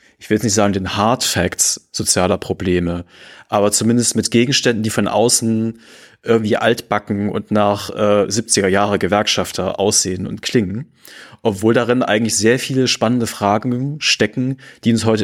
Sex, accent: male, German